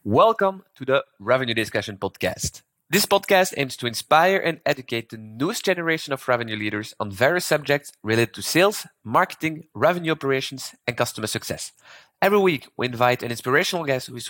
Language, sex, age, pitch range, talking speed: English, male, 30-49, 115-150 Hz, 170 wpm